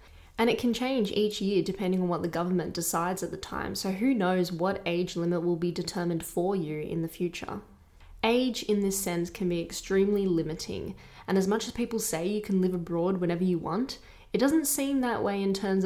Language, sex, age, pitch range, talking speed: English, female, 10-29, 175-205 Hz, 215 wpm